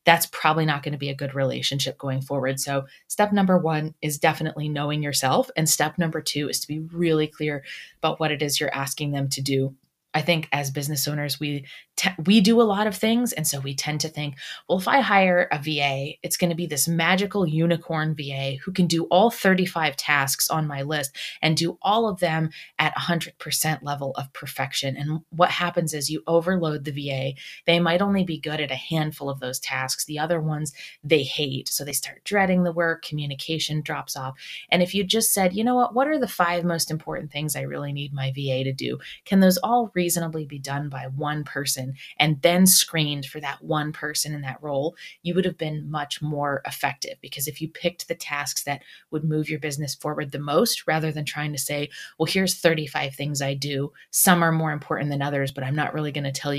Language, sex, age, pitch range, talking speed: English, female, 20-39, 140-170 Hz, 225 wpm